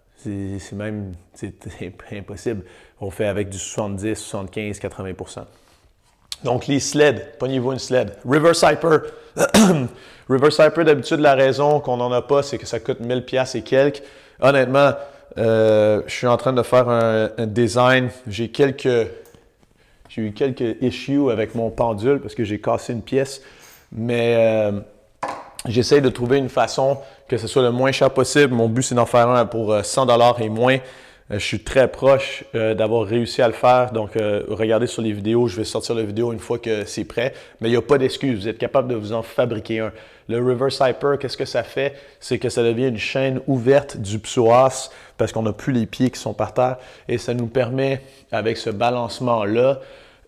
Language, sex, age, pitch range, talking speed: French, male, 30-49, 110-135 Hz, 190 wpm